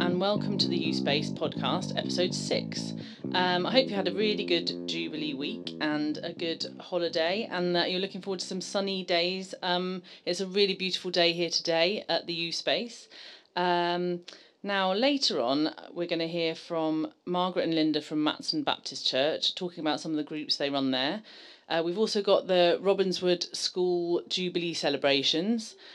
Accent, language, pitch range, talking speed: British, English, 155-185 Hz, 185 wpm